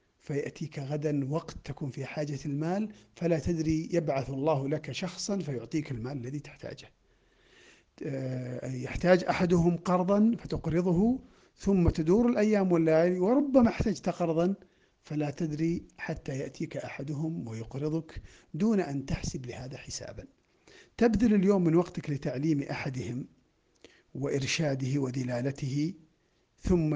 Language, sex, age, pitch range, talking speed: Arabic, male, 50-69, 140-175 Hz, 105 wpm